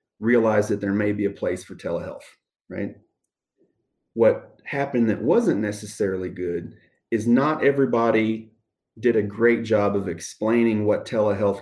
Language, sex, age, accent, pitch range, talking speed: English, male, 30-49, American, 105-130 Hz, 140 wpm